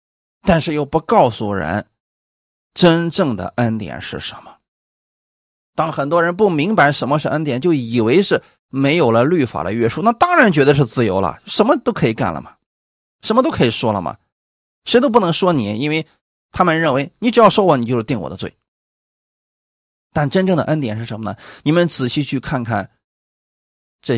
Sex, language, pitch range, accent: male, Chinese, 105-175 Hz, native